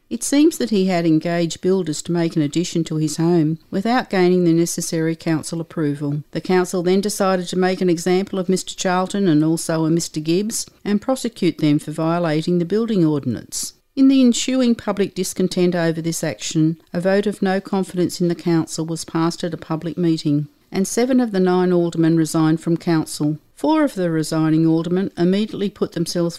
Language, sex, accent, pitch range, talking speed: English, female, Australian, 160-190 Hz, 190 wpm